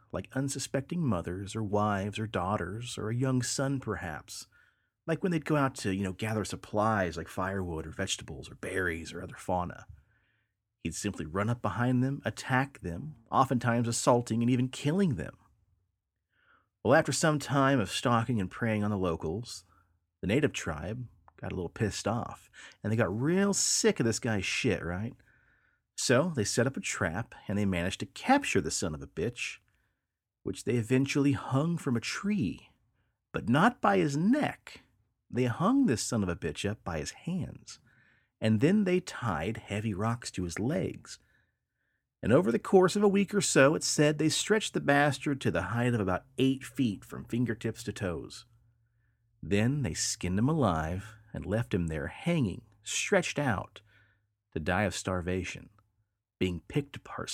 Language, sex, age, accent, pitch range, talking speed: English, male, 30-49, American, 95-135 Hz, 175 wpm